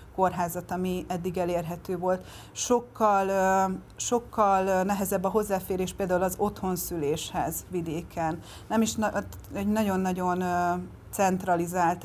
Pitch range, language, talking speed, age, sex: 175-190 Hz, Hungarian, 95 wpm, 30-49, female